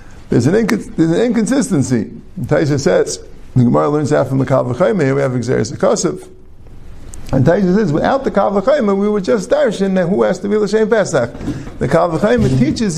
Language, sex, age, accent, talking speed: English, male, 50-69, American, 195 wpm